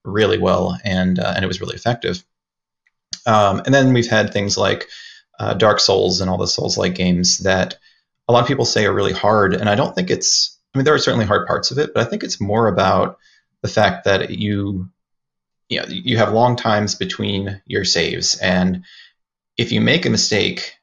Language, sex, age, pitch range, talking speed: English, male, 30-49, 90-115 Hz, 205 wpm